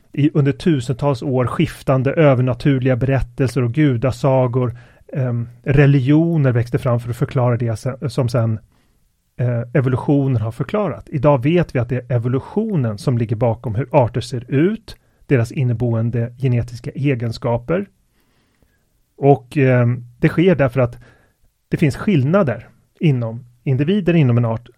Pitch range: 120-145 Hz